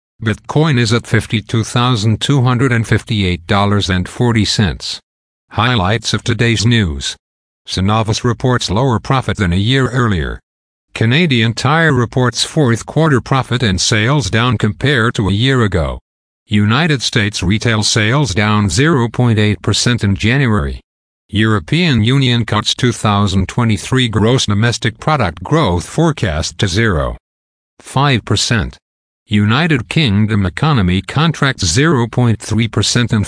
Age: 50-69